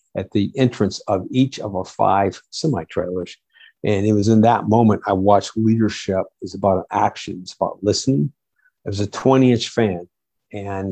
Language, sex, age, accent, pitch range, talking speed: English, male, 50-69, American, 95-110 Hz, 175 wpm